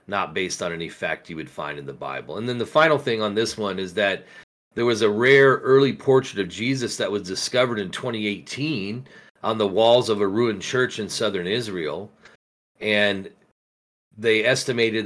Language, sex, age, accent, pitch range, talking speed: English, male, 40-59, American, 100-125 Hz, 185 wpm